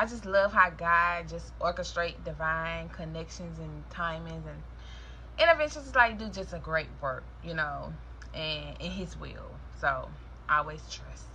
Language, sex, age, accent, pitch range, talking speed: English, female, 20-39, American, 145-220 Hz, 155 wpm